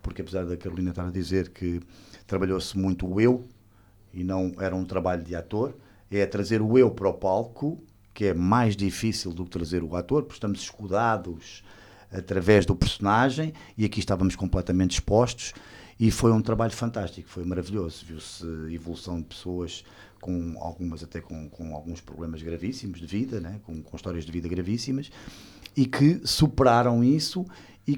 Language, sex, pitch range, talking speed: English, male, 90-125 Hz, 170 wpm